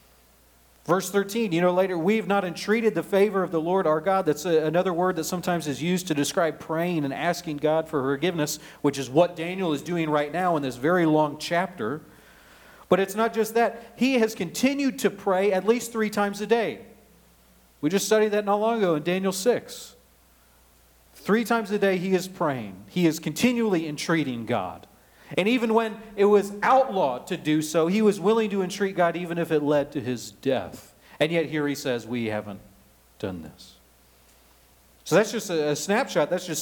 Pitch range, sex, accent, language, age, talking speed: 130-195 Hz, male, American, English, 40-59, 195 wpm